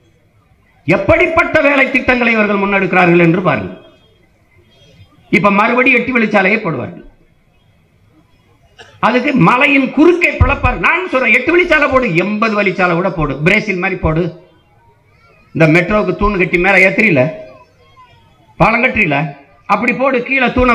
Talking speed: 45 wpm